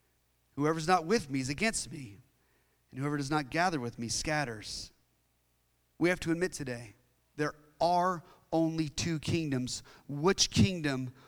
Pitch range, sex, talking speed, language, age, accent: 125-170 Hz, male, 145 wpm, English, 30-49, American